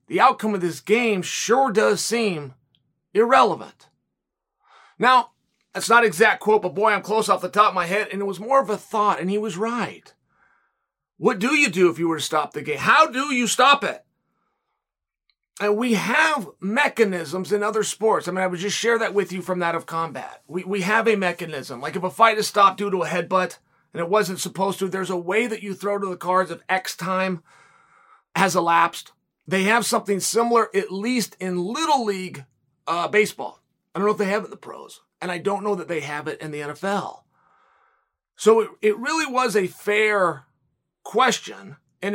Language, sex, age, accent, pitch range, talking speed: English, male, 30-49, American, 180-220 Hz, 210 wpm